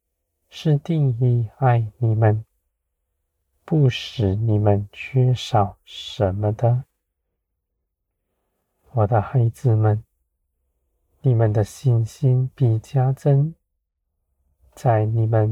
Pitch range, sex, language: 80-125 Hz, male, Chinese